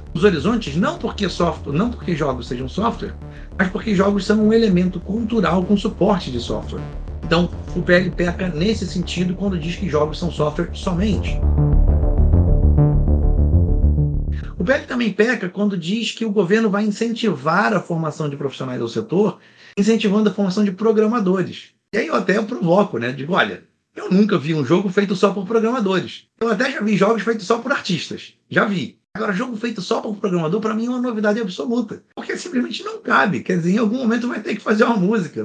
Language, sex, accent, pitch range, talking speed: Portuguese, male, Brazilian, 155-220 Hz, 190 wpm